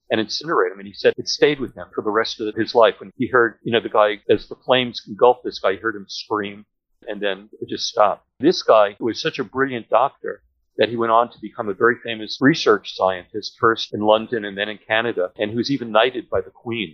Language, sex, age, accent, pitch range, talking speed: English, male, 50-69, American, 105-130 Hz, 250 wpm